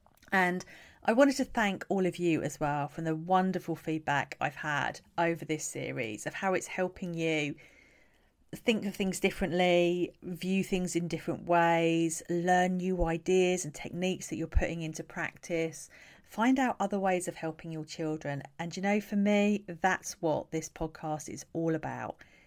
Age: 40-59